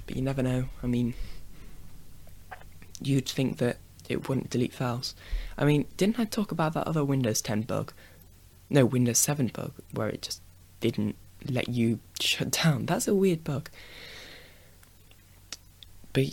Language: English